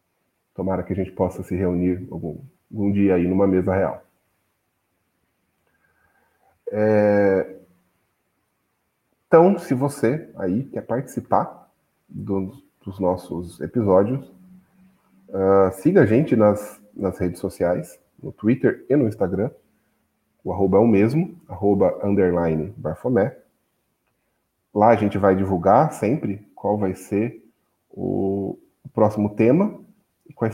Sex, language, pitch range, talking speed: male, Portuguese, 90-110 Hz, 110 wpm